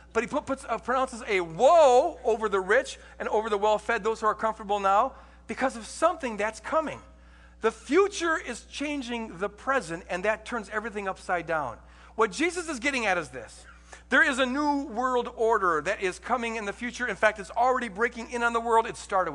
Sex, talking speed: male, 200 wpm